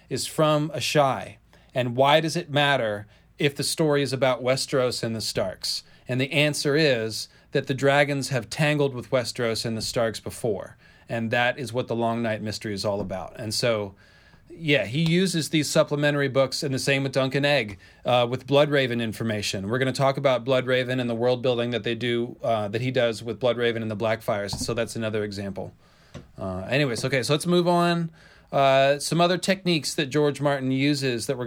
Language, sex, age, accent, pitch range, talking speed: English, male, 30-49, American, 120-150 Hz, 200 wpm